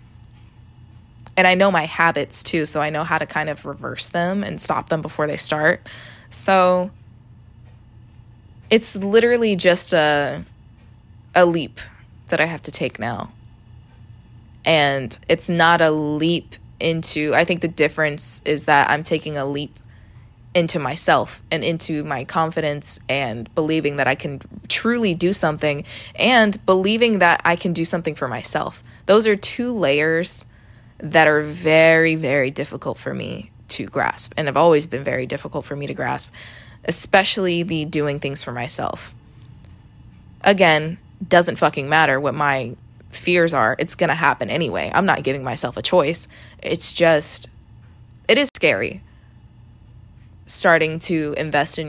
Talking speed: 150 wpm